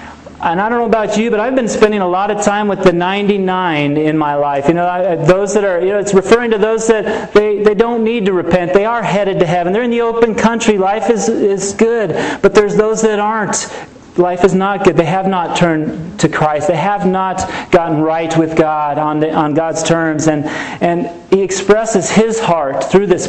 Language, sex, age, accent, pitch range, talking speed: English, male, 40-59, American, 170-200 Hz, 225 wpm